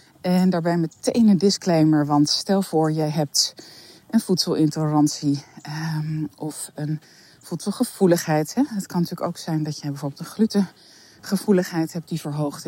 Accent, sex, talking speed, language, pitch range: Dutch, female, 135 wpm, Dutch, 145-180 Hz